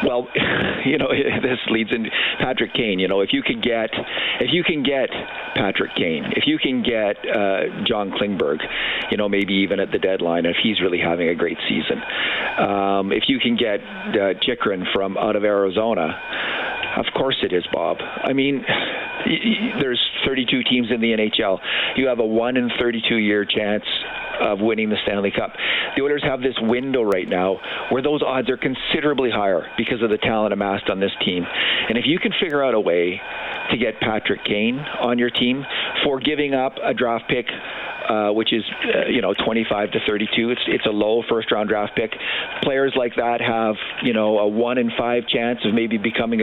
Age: 50-69